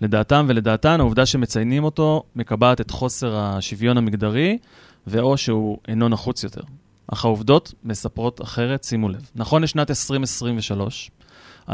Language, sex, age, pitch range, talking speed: Hebrew, male, 30-49, 110-130 Hz, 125 wpm